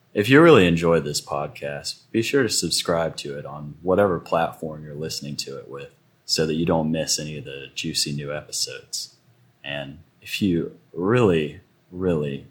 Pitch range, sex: 75-95 Hz, male